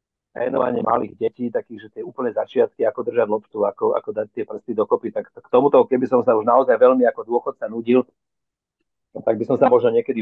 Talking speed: 225 wpm